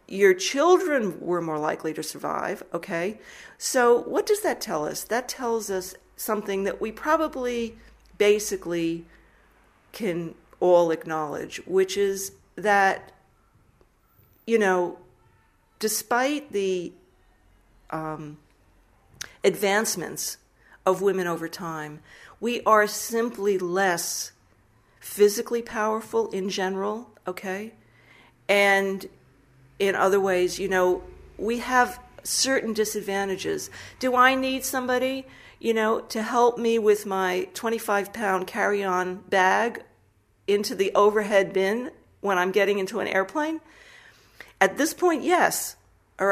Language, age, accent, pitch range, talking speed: English, 40-59, American, 175-230 Hz, 110 wpm